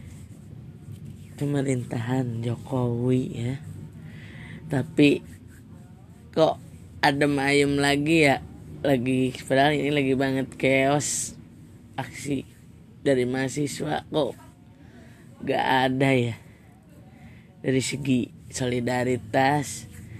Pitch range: 120-135 Hz